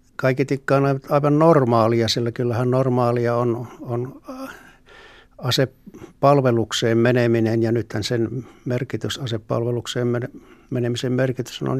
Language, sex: Finnish, male